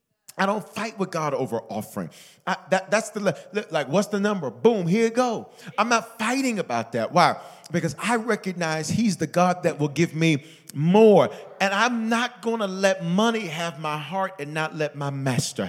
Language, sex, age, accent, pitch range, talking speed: English, male, 40-59, American, 130-190 Hz, 195 wpm